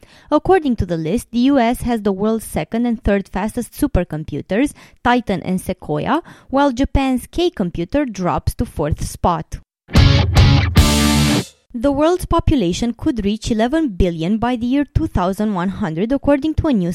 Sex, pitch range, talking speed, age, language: female, 185-275 Hz, 140 wpm, 20-39, English